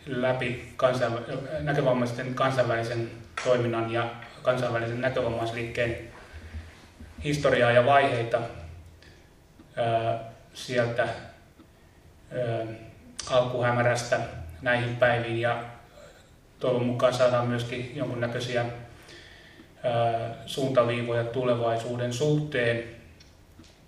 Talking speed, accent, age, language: 60 wpm, native, 30-49, Finnish